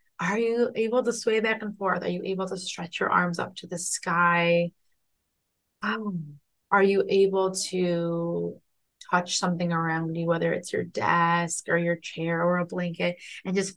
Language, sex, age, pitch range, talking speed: English, female, 30-49, 180-210 Hz, 175 wpm